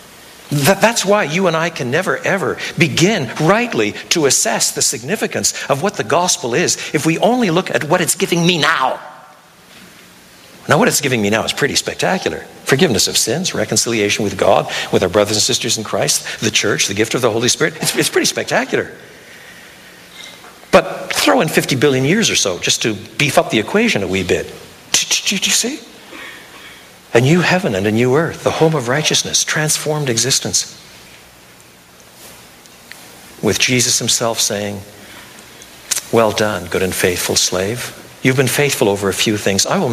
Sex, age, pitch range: male, 60-79, 95-150 Hz